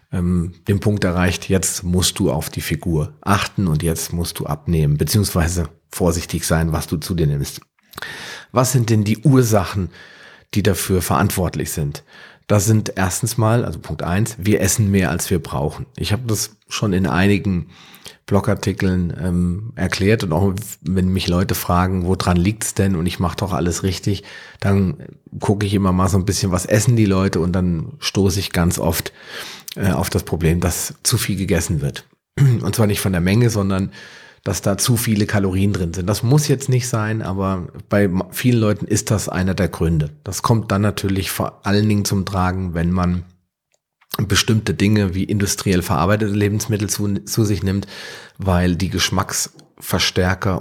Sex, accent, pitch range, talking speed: male, German, 85-105 Hz, 175 wpm